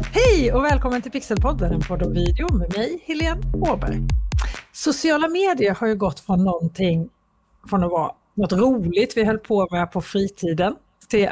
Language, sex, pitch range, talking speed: Swedish, female, 175-250 Hz, 165 wpm